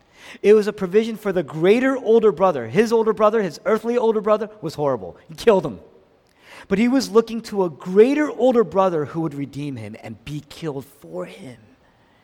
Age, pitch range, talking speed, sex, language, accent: 50-69, 140-215 Hz, 190 wpm, male, English, American